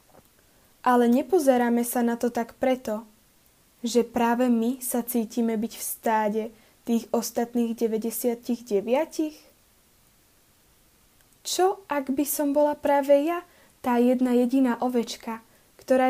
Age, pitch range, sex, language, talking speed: 20-39, 230-265 Hz, female, Slovak, 110 wpm